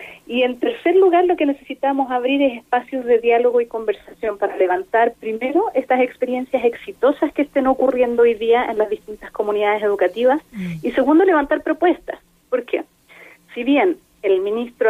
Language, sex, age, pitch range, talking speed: Spanish, female, 30-49, 220-280 Hz, 160 wpm